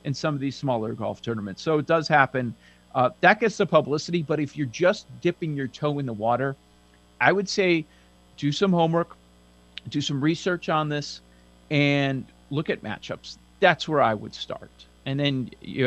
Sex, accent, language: male, American, English